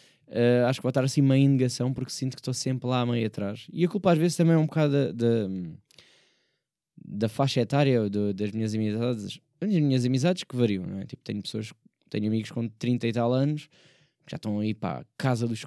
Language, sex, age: Portuguese, male, 10-29